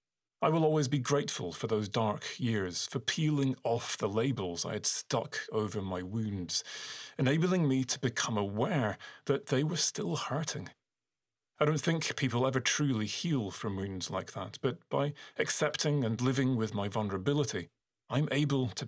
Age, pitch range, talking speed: 30-49, 110-140 Hz, 165 wpm